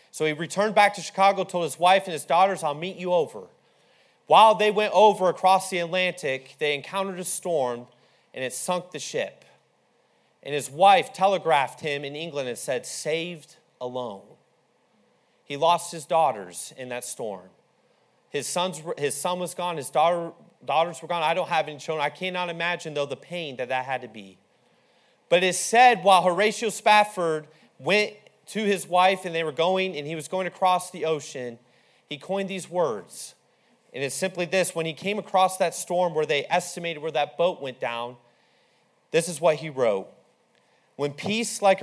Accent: American